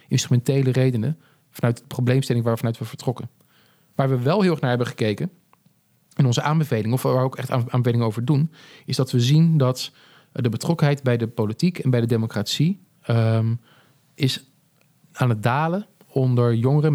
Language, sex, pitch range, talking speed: Dutch, male, 120-145 Hz, 170 wpm